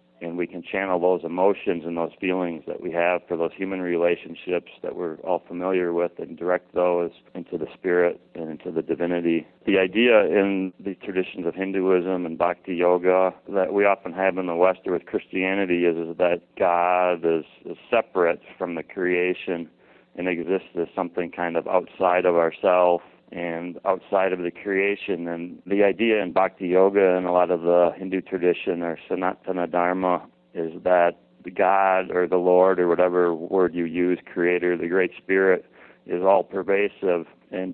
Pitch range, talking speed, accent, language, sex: 85-95 Hz, 175 wpm, American, English, male